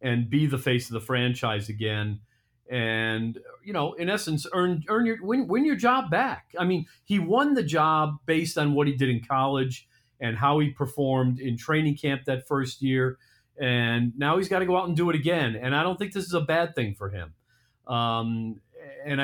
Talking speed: 210 wpm